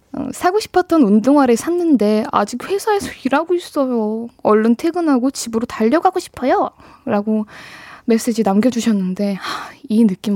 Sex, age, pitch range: female, 20-39, 215-285 Hz